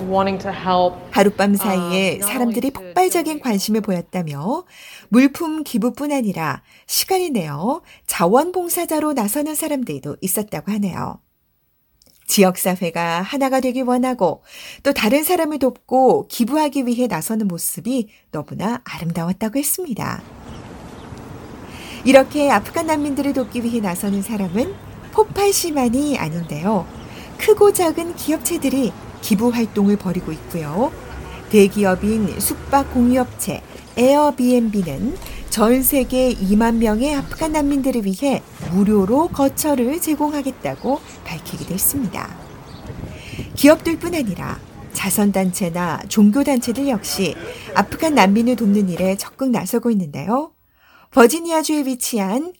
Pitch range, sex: 195-280 Hz, female